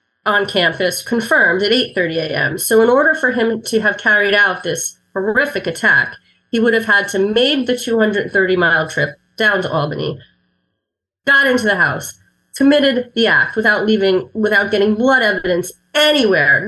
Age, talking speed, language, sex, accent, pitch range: 30-49, 170 wpm, English, female, American, 175-230 Hz